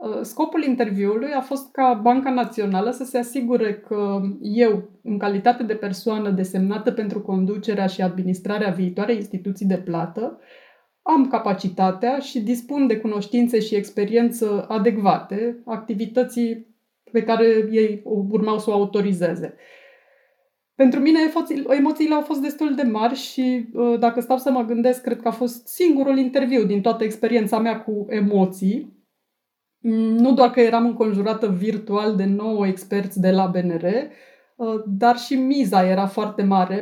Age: 20-39